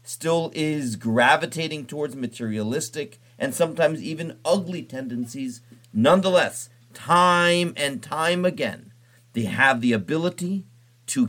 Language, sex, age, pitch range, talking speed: English, male, 40-59, 120-180 Hz, 105 wpm